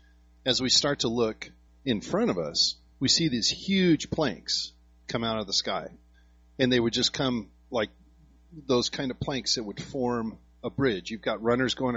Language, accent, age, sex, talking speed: English, American, 40-59, male, 190 wpm